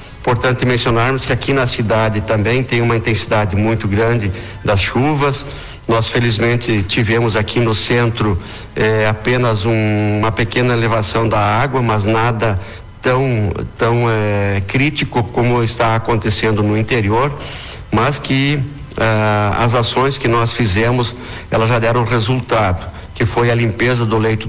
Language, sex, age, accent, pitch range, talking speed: Portuguese, male, 60-79, Brazilian, 110-125 Hz, 135 wpm